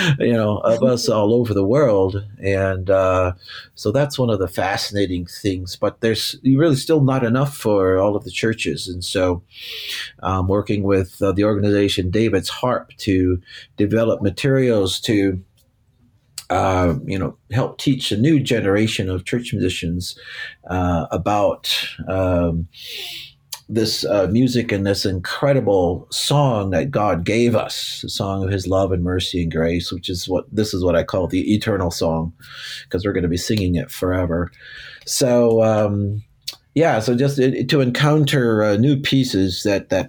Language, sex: English, male